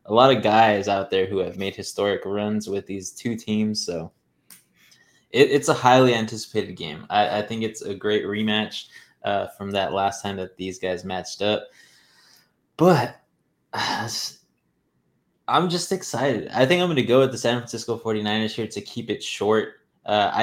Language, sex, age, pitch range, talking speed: English, male, 20-39, 100-115 Hz, 175 wpm